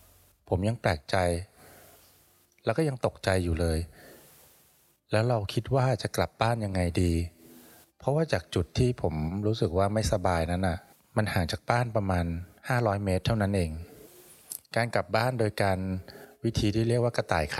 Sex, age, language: male, 20-39, Thai